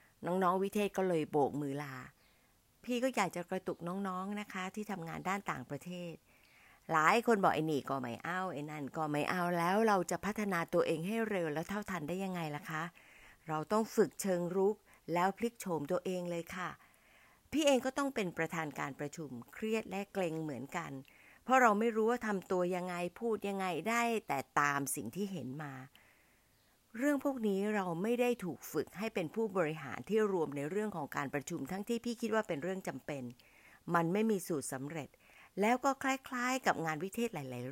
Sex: female